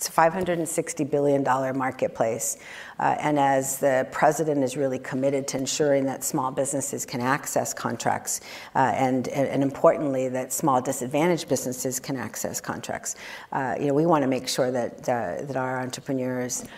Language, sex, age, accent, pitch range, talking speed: English, female, 50-69, American, 135-155 Hz, 165 wpm